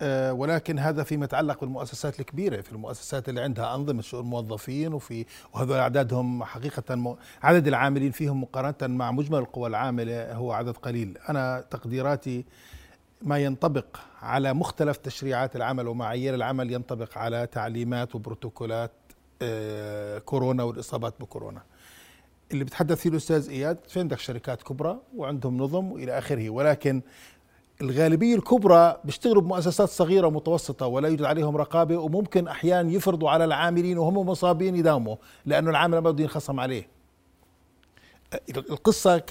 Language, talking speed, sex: Arabic, 130 wpm, male